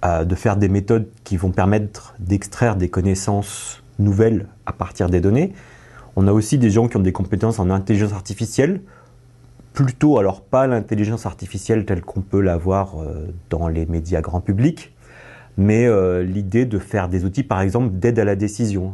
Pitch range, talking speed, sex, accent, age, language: 100-125 Hz, 170 wpm, male, French, 30-49, French